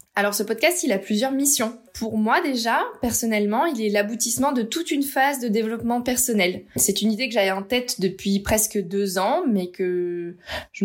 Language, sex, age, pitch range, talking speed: French, female, 20-39, 195-245 Hz, 195 wpm